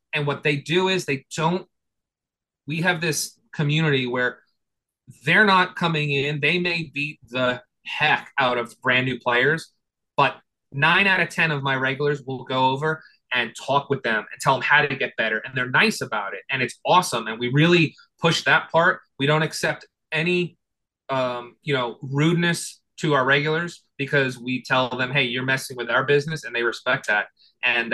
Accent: American